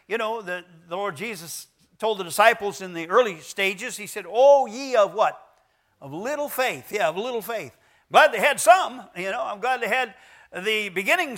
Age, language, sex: 50-69, English, male